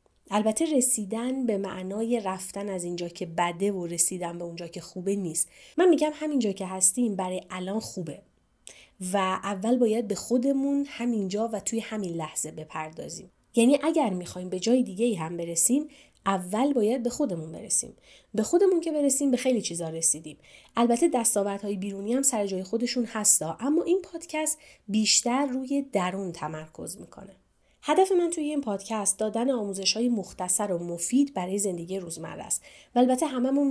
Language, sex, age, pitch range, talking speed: Persian, female, 30-49, 180-245 Hz, 160 wpm